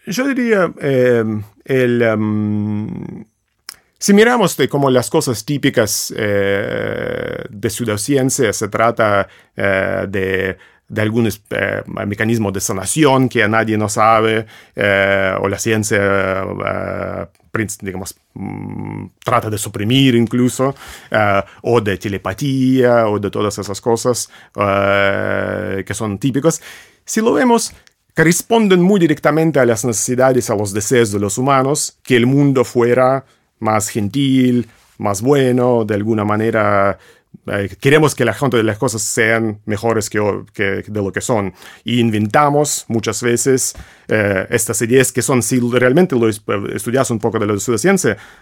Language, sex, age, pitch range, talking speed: Spanish, male, 30-49, 105-130 Hz, 145 wpm